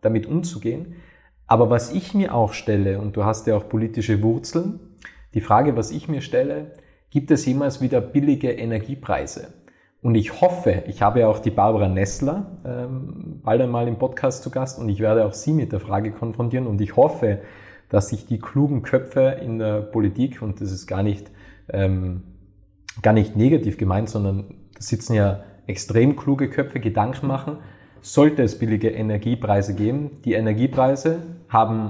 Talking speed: 170 wpm